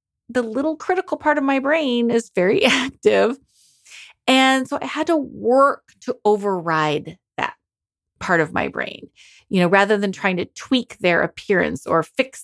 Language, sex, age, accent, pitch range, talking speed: English, female, 30-49, American, 195-300 Hz, 165 wpm